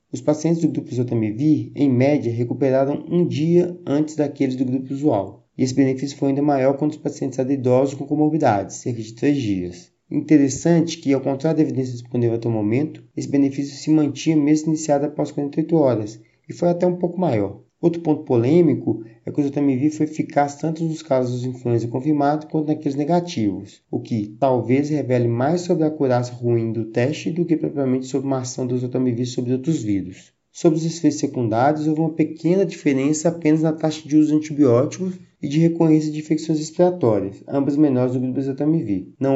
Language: Portuguese